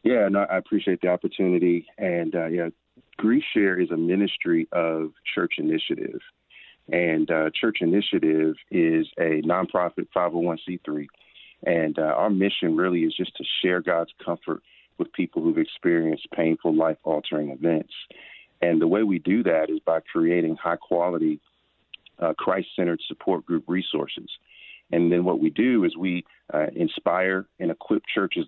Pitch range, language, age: 80-90 Hz, English, 40-59